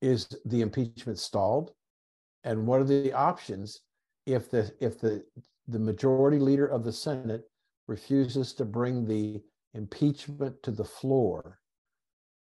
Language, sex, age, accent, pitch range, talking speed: English, male, 50-69, American, 110-130 Hz, 130 wpm